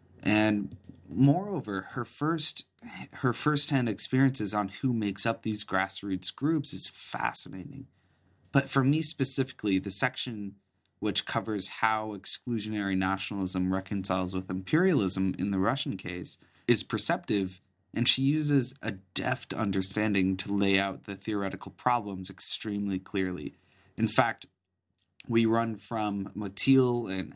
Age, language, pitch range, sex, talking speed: 30-49, English, 95-120 Hz, male, 125 wpm